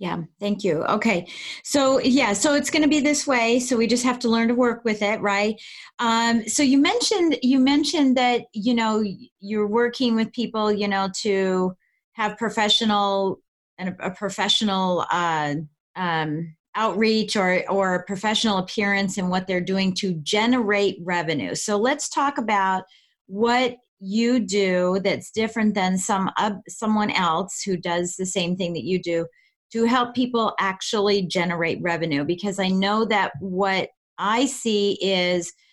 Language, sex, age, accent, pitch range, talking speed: English, female, 30-49, American, 185-240 Hz, 160 wpm